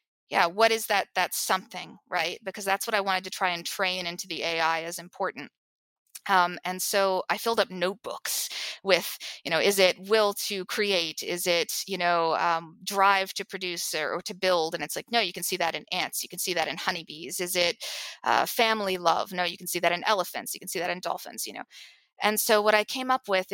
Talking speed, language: 230 wpm, English